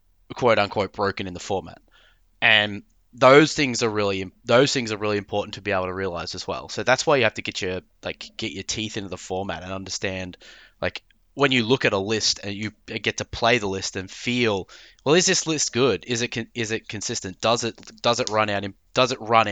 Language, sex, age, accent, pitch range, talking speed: English, male, 20-39, Australian, 95-115 Hz, 235 wpm